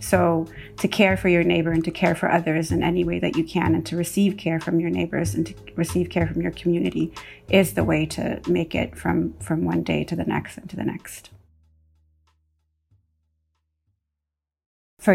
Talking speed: 195 wpm